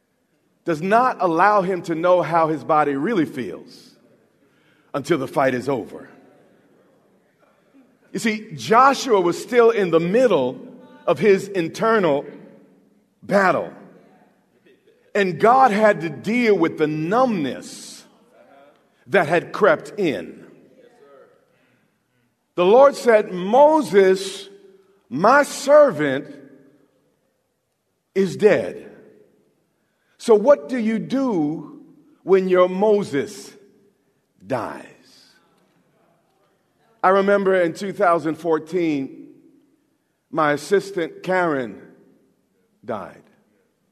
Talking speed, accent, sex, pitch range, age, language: 90 wpm, American, male, 160-230 Hz, 50-69, English